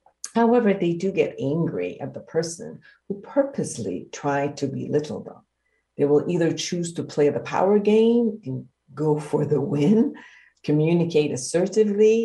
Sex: female